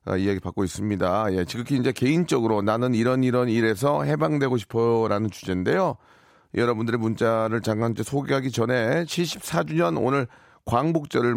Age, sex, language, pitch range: 40-59, male, Korean, 110-145 Hz